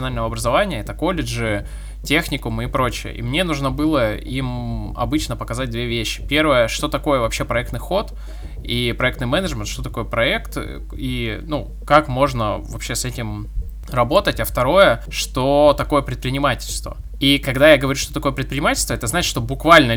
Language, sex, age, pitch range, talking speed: Russian, male, 20-39, 115-150 Hz, 155 wpm